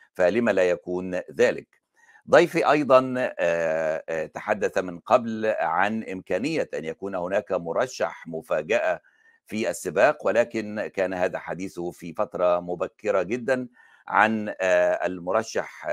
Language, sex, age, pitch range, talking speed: Arabic, male, 60-79, 85-130 Hz, 105 wpm